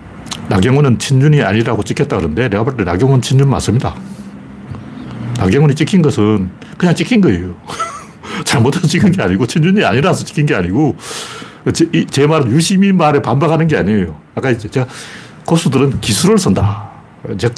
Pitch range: 105-155 Hz